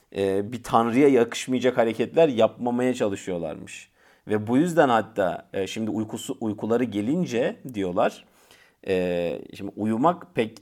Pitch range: 105-140 Hz